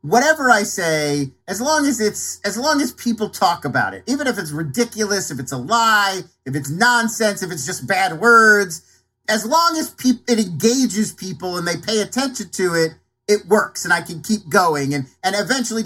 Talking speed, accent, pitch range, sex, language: 200 wpm, American, 175-245 Hz, male, English